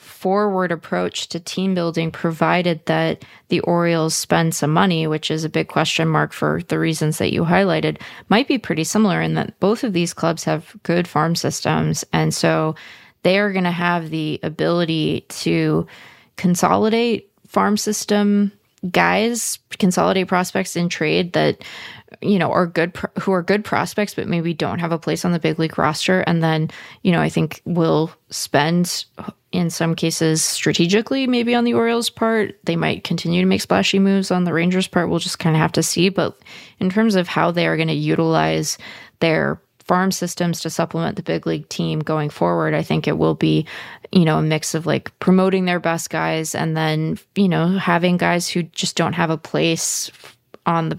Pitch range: 155-185 Hz